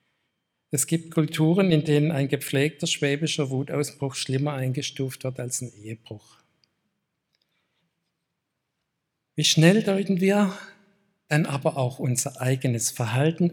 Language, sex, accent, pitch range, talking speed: German, male, German, 125-155 Hz, 110 wpm